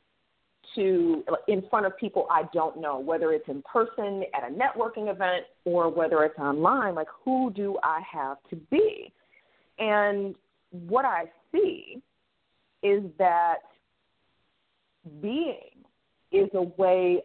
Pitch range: 160-230 Hz